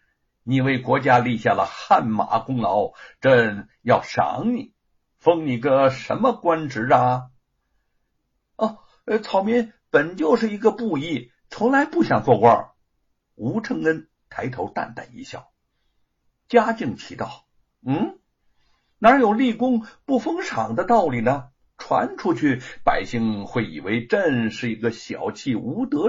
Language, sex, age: Chinese, male, 60-79